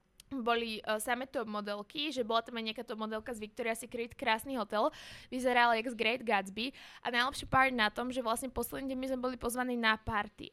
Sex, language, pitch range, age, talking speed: female, Slovak, 220-255 Hz, 20-39, 210 wpm